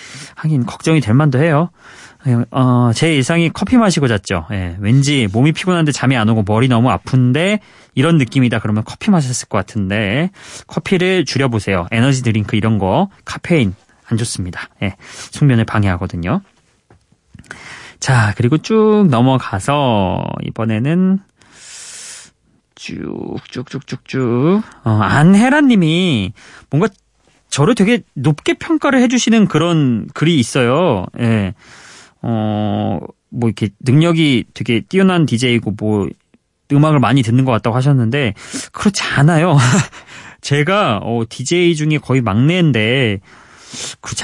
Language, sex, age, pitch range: Korean, male, 30-49, 110-160 Hz